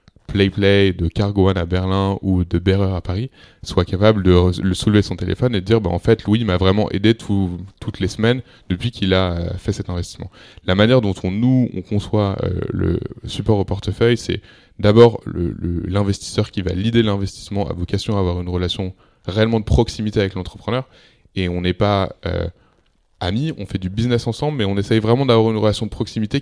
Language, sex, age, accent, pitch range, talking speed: French, male, 20-39, French, 90-110 Hz, 205 wpm